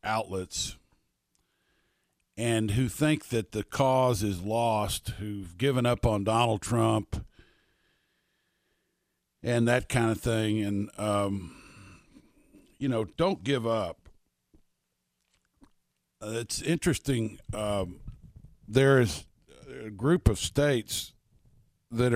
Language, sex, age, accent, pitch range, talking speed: English, male, 50-69, American, 95-120 Hz, 100 wpm